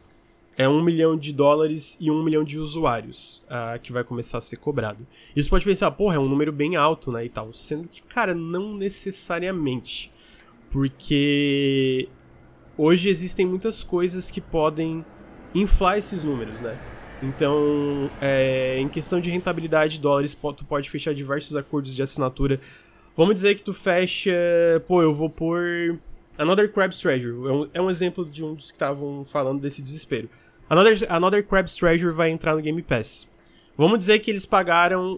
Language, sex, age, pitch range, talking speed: Portuguese, male, 20-39, 135-180 Hz, 170 wpm